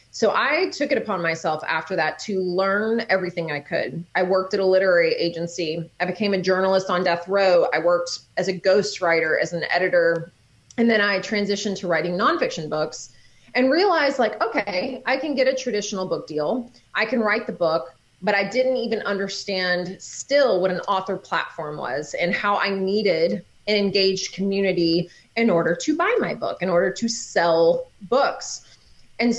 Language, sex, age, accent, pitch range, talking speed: English, female, 30-49, American, 175-230 Hz, 180 wpm